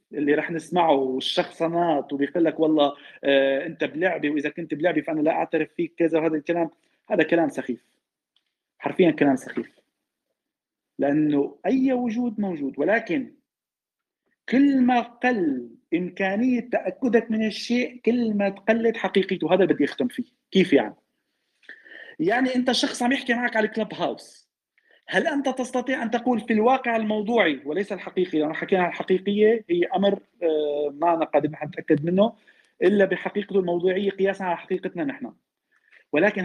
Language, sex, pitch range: Arabic, male, 160-235 Hz